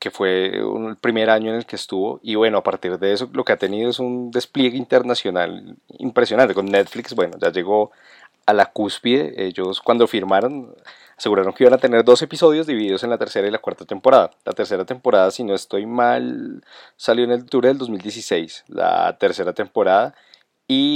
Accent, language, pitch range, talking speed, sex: Colombian, Spanish, 105-130 Hz, 190 wpm, male